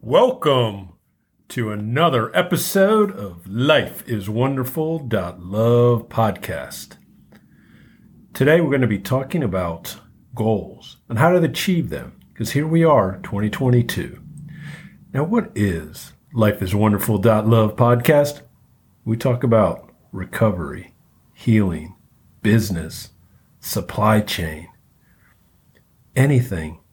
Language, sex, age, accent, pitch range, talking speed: English, male, 50-69, American, 95-130 Hz, 85 wpm